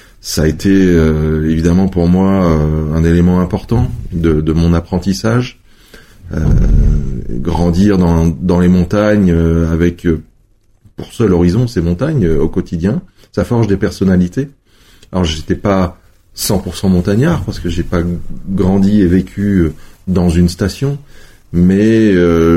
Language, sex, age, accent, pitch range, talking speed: French, male, 30-49, French, 85-105 Hz, 145 wpm